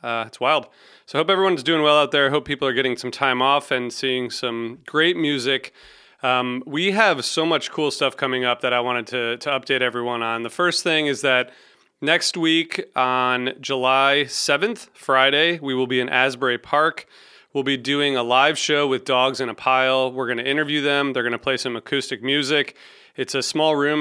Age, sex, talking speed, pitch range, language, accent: 30-49, male, 210 wpm, 125-145 Hz, English, American